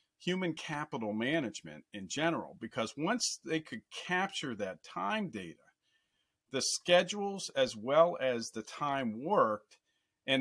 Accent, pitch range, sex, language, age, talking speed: American, 105-150 Hz, male, English, 50-69, 125 wpm